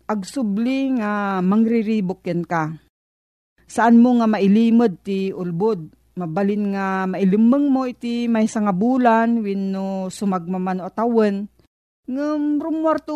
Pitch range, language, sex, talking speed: 185-250 Hz, Filipino, female, 105 wpm